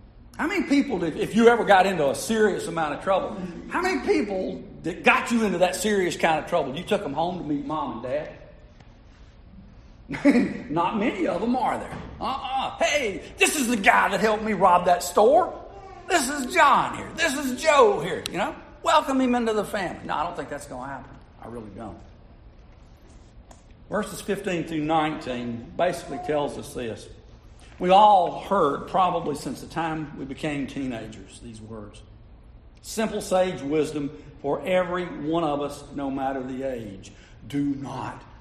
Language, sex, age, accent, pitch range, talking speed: English, male, 50-69, American, 130-210 Hz, 175 wpm